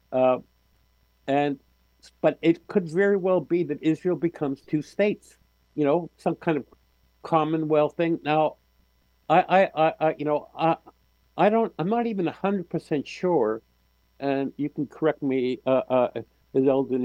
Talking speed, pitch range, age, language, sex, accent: 160 wpm, 125-160 Hz, 50-69, English, male, American